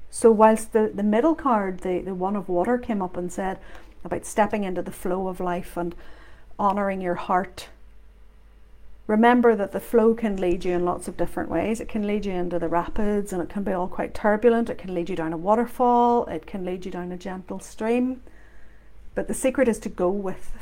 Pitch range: 180-225 Hz